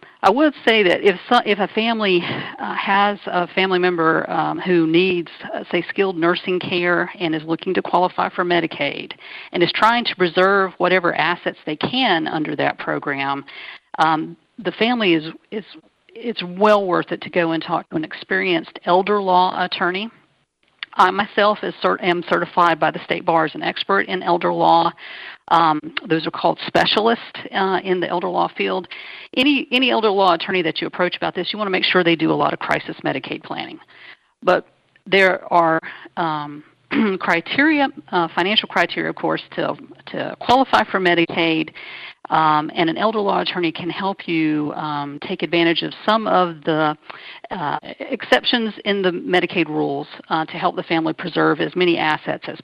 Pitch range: 165-195 Hz